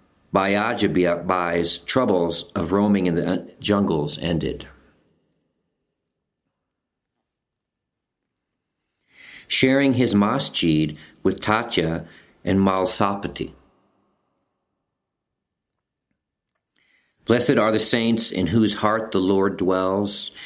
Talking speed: 75 wpm